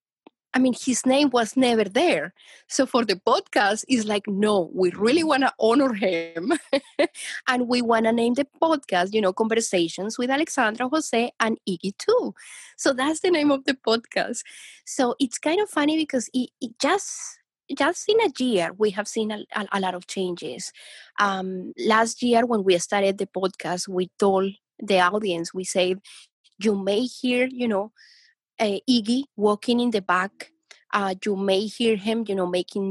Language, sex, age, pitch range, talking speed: English, female, 20-39, 195-255 Hz, 180 wpm